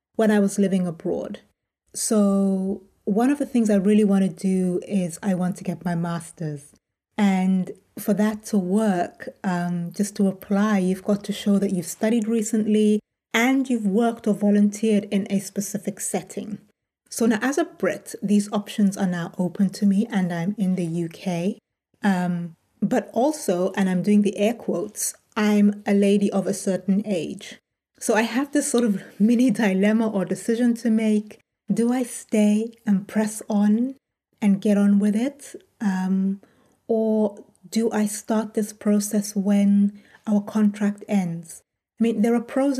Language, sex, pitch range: English, female, 195-230 Hz